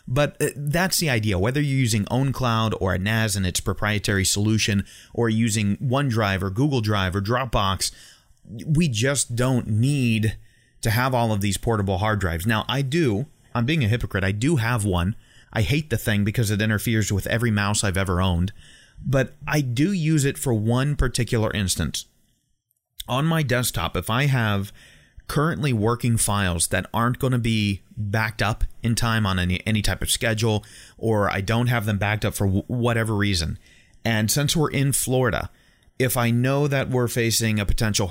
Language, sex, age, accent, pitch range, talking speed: English, male, 30-49, American, 100-125 Hz, 185 wpm